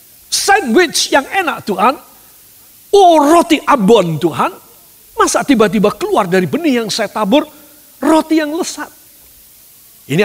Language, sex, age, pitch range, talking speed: Indonesian, male, 50-69, 205-295 Hz, 115 wpm